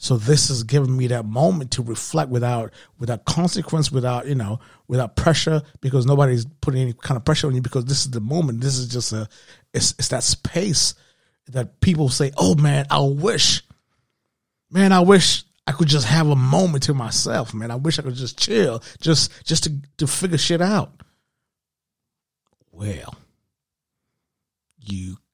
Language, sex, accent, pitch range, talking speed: English, male, American, 120-145 Hz, 175 wpm